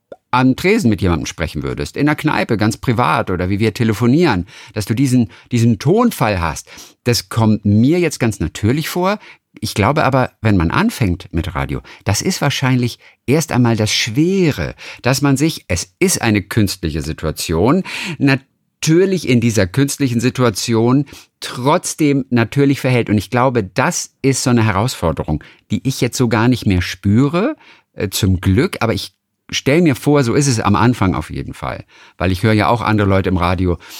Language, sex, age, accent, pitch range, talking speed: German, male, 50-69, German, 95-135 Hz, 175 wpm